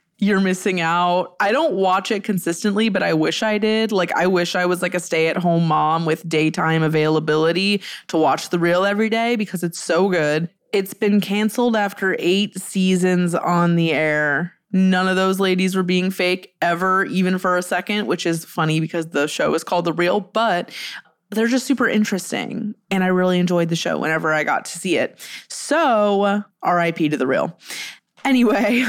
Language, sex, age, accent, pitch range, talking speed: English, female, 20-39, American, 165-215 Hz, 185 wpm